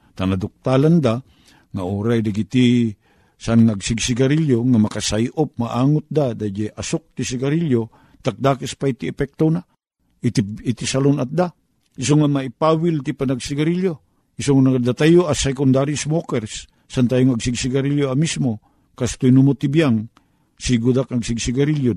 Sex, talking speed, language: male, 120 wpm, Filipino